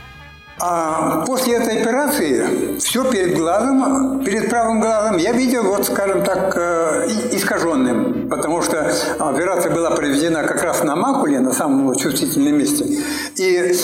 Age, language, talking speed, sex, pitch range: 60-79, Russian, 130 wpm, male, 185-275 Hz